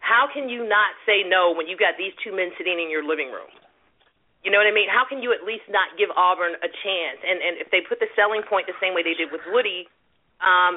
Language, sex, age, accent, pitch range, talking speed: English, female, 40-59, American, 170-215 Hz, 265 wpm